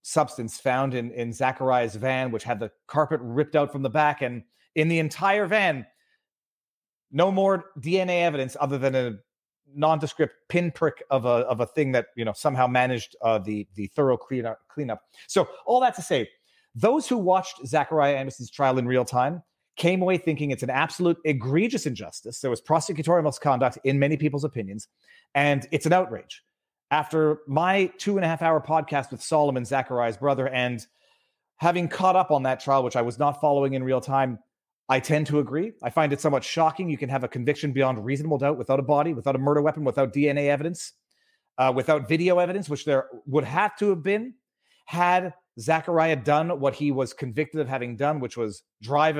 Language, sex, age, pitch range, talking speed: English, male, 30-49, 130-160 Hz, 185 wpm